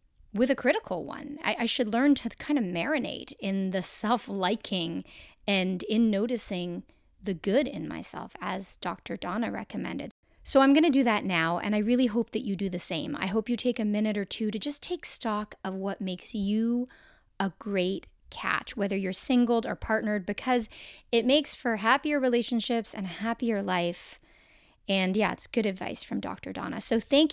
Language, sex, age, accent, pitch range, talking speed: English, female, 30-49, American, 195-245 Hz, 190 wpm